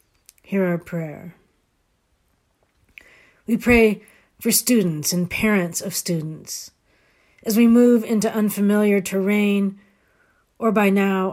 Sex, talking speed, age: female, 105 wpm, 40-59